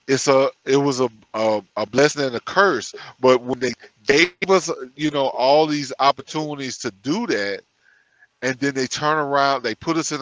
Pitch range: 120-150 Hz